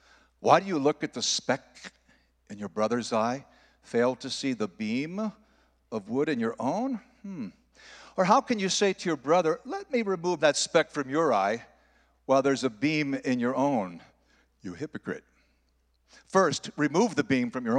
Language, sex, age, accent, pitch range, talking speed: English, male, 60-79, American, 130-185 Hz, 180 wpm